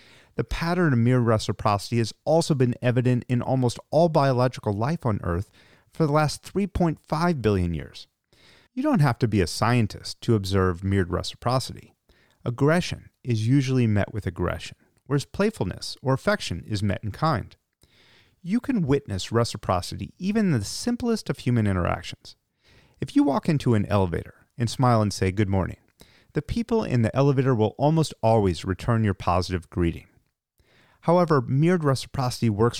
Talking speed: 155 wpm